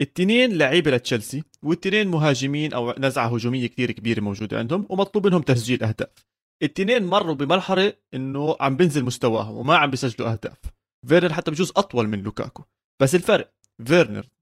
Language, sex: Arabic, male